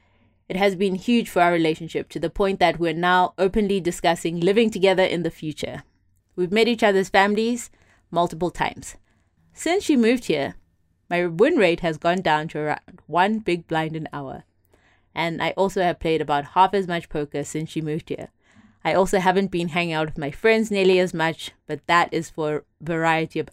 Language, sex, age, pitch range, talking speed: English, female, 20-39, 150-185 Hz, 195 wpm